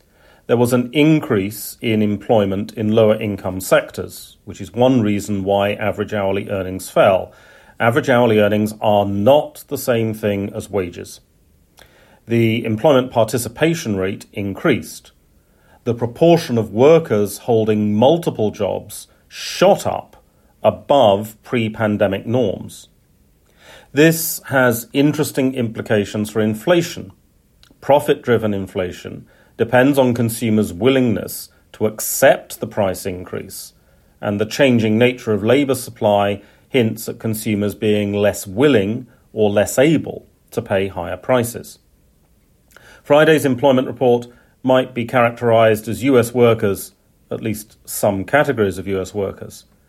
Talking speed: 120 wpm